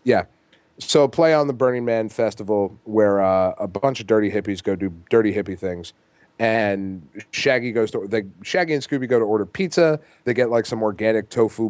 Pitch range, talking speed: 105-130 Hz, 195 wpm